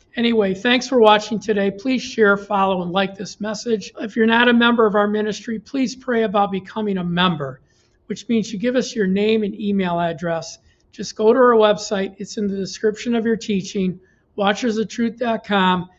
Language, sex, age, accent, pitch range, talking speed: English, male, 50-69, American, 190-220 Hz, 185 wpm